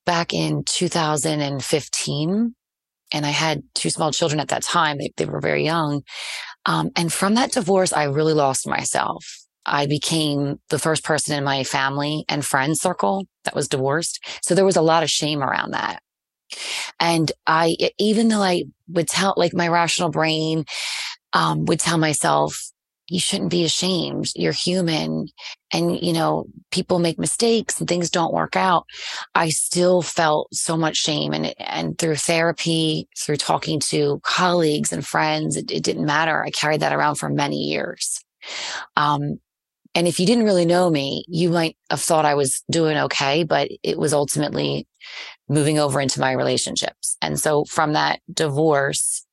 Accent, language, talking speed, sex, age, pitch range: American, English, 170 wpm, female, 30-49, 145-170 Hz